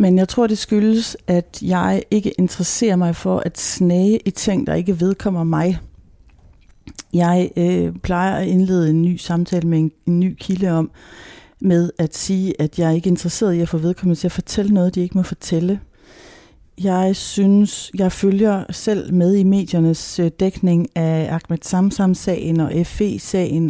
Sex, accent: female, native